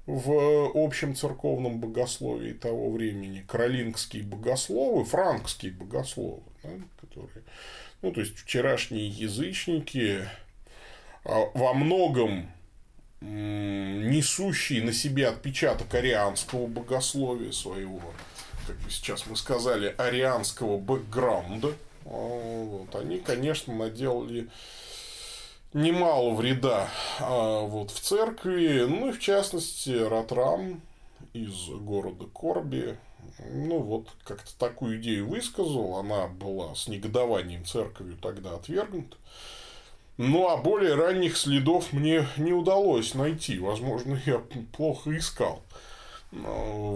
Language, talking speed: Russian, 100 wpm